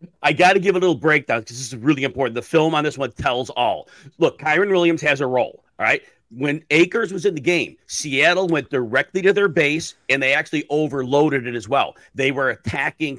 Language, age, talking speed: English, 40-59, 225 wpm